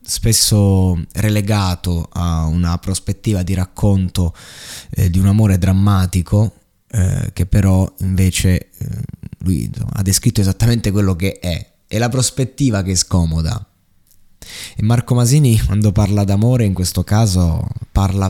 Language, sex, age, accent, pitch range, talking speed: Italian, male, 20-39, native, 95-115 Hz, 130 wpm